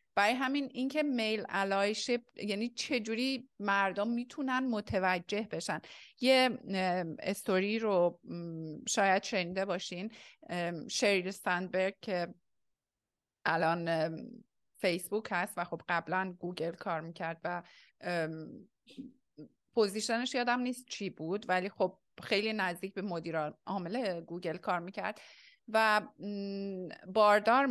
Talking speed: 100 wpm